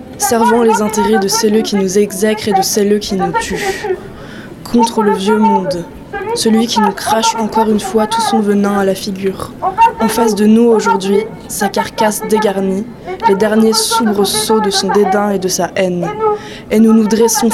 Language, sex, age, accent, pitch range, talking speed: French, female, 20-39, French, 200-225 Hz, 185 wpm